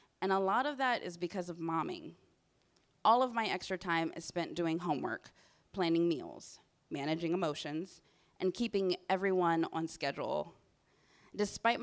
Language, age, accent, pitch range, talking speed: English, 20-39, American, 165-225 Hz, 140 wpm